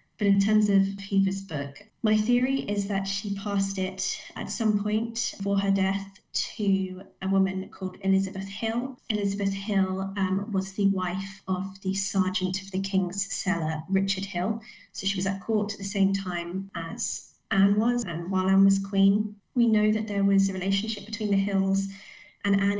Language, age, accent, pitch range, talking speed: English, 20-39, British, 185-205 Hz, 180 wpm